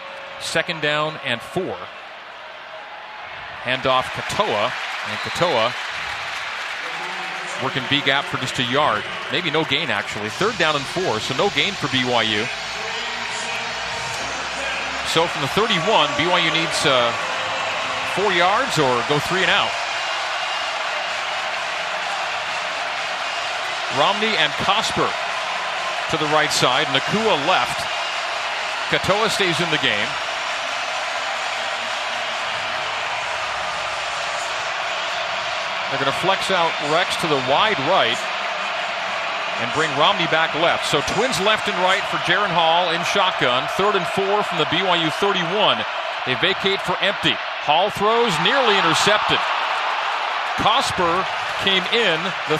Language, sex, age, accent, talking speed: English, male, 40-59, American, 115 wpm